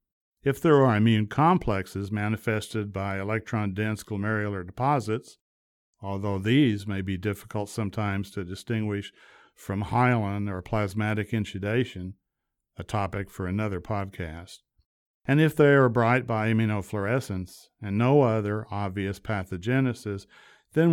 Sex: male